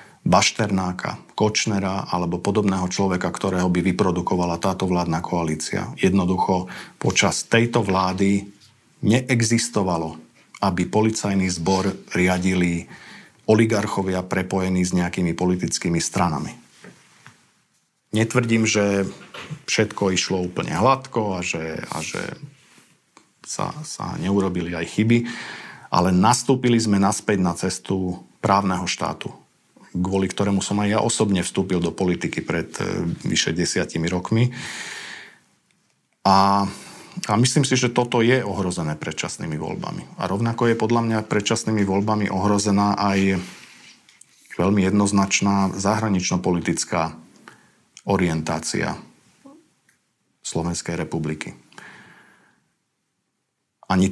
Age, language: 40-59, Slovak